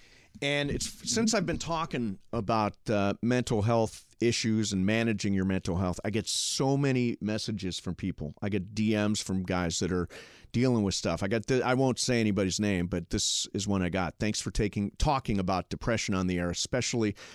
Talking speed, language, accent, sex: 195 wpm, English, American, male